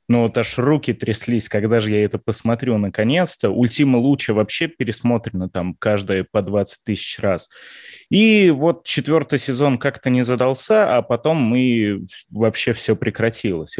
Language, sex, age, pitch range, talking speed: Russian, male, 20-39, 115-160 Hz, 150 wpm